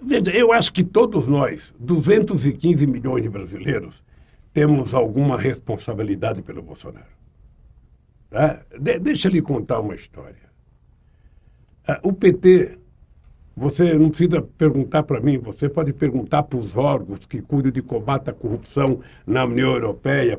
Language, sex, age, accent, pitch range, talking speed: Portuguese, male, 60-79, Brazilian, 125-175 Hz, 130 wpm